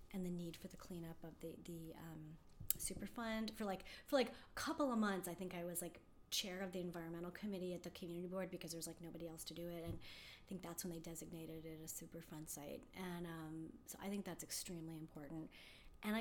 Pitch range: 160-195 Hz